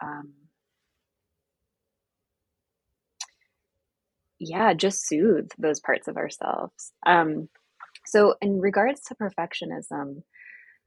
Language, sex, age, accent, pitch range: English, female, 20-39, American, 165-215 Hz